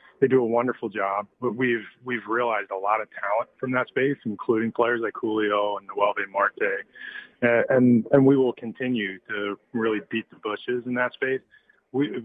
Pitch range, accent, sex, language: 105-125 Hz, American, male, English